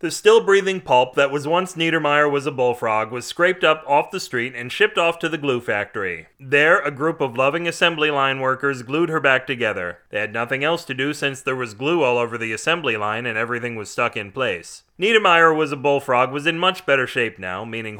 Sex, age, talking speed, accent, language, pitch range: male, 30-49, 225 wpm, American, English, 120-165 Hz